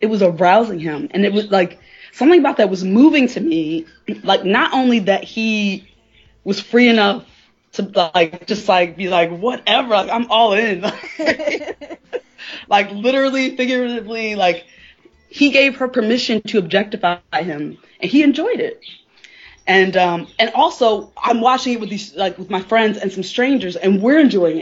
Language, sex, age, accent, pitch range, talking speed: English, female, 20-39, American, 185-235 Hz, 165 wpm